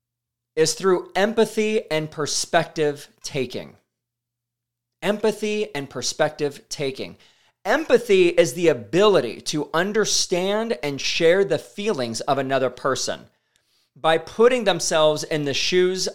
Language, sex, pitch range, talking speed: English, male, 125-170 Hz, 110 wpm